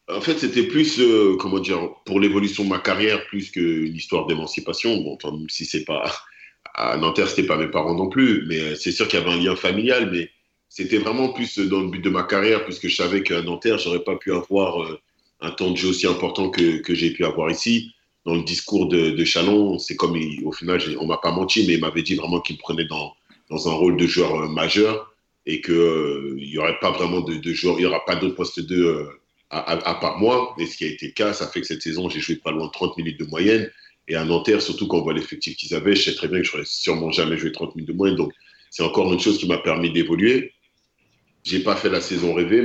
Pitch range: 80-100 Hz